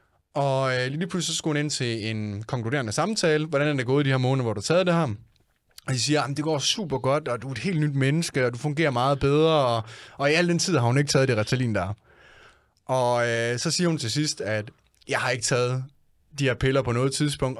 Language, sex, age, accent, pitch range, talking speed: Danish, male, 20-39, native, 115-145 Hz, 265 wpm